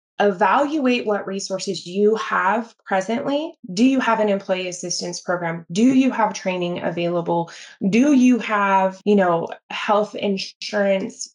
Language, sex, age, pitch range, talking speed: English, female, 20-39, 185-220 Hz, 130 wpm